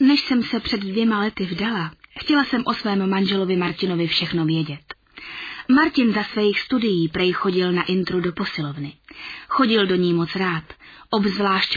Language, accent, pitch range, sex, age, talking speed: Czech, native, 185-260 Hz, female, 20-39, 160 wpm